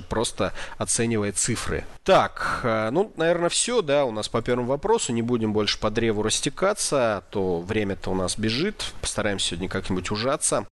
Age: 30-49